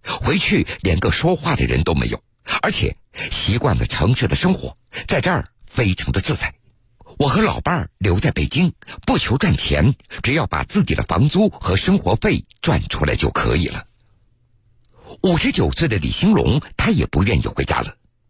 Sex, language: male, Chinese